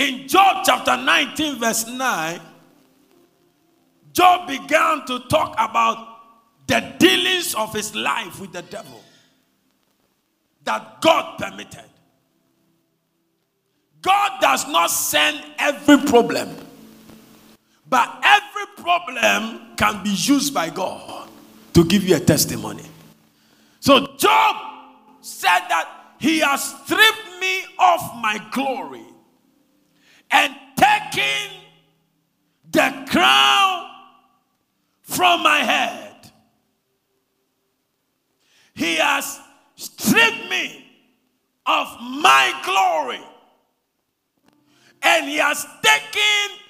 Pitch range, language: 230-375 Hz, English